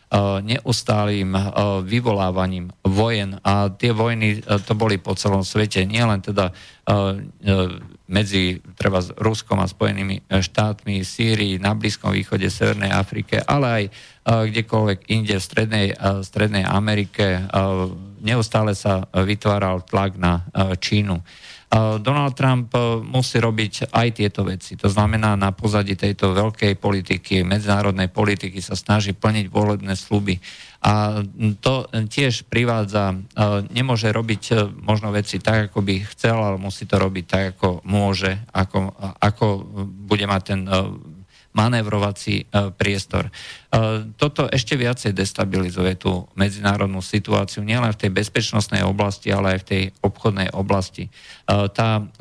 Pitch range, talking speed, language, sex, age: 95-110 Hz, 120 wpm, Slovak, male, 50-69